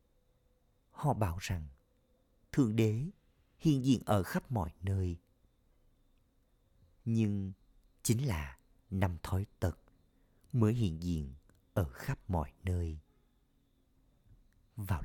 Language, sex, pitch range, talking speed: Vietnamese, male, 80-110 Hz, 100 wpm